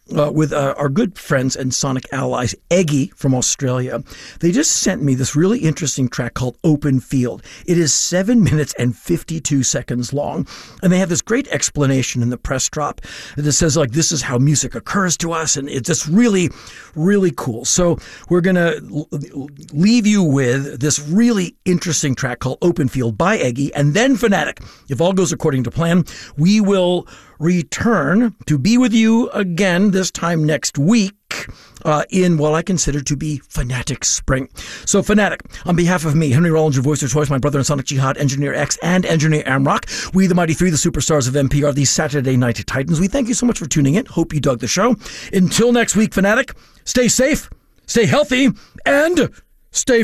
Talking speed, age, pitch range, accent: 190 wpm, 50-69, 140-185 Hz, American